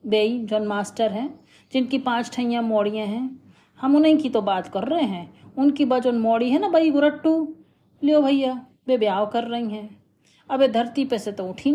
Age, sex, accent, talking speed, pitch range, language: 40-59, female, native, 195 wpm, 195-255 Hz, Hindi